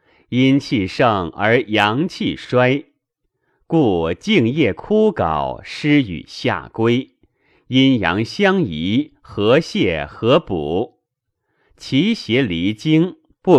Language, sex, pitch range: Chinese, male, 105-175 Hz